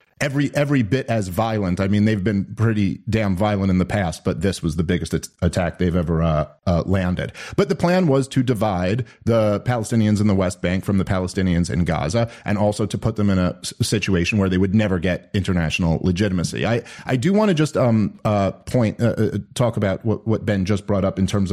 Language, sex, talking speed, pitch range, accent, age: English, male, 225 wpm, 95-115 Hz, American, 40-59